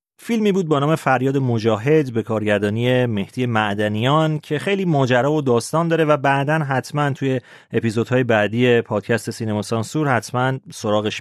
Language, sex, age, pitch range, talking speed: Persian, male, 40-59, 110-150 Hz, 145 wpm